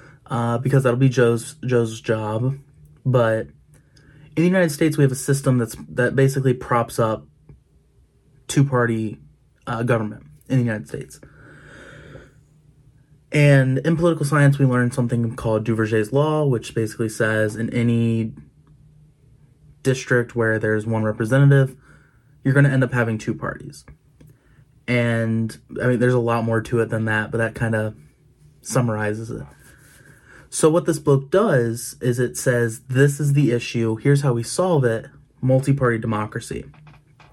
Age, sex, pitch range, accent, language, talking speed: 20-39, male, 115-145 Hz, American, English, 150 wpm